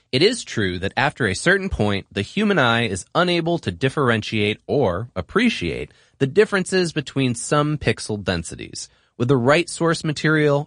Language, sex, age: English, male, 30-49